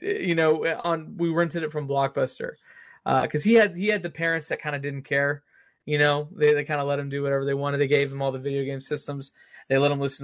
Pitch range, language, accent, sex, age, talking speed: 135-160 Hz, English, American, male, 20-39, 265 wpm